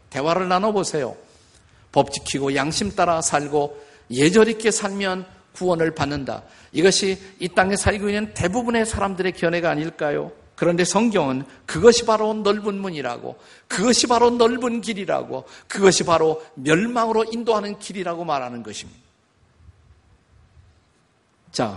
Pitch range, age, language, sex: 120-185 Hz, 50-69, Korean, male